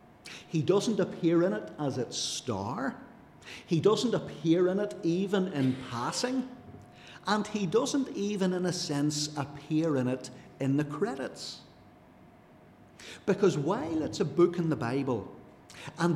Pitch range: 130-190 Hz